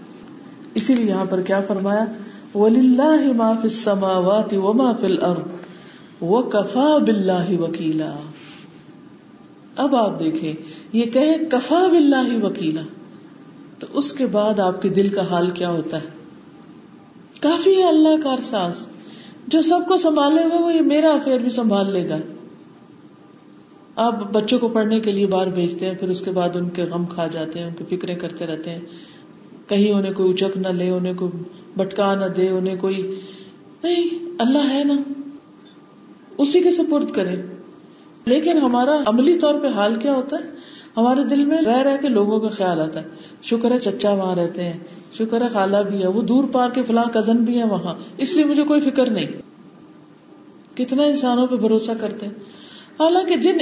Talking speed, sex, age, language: 155 wpm, female, 50-69, Urdu